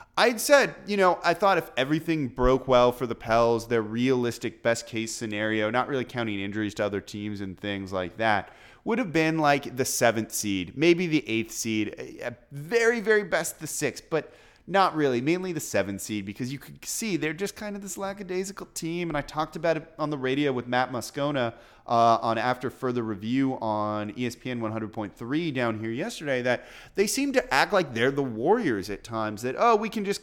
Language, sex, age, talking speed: English, male, 30-49, 200 wpm